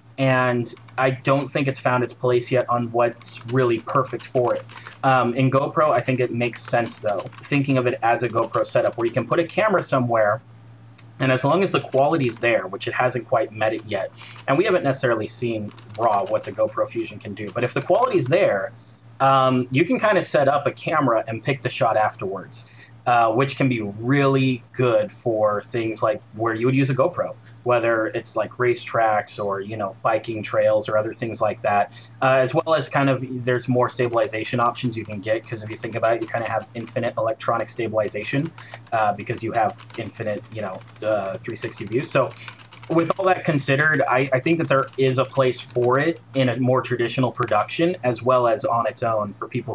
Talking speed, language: 215 wpm, English